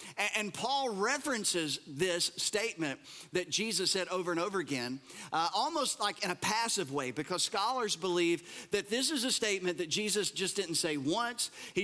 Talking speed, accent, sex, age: 170 wpm, American, male, 40-59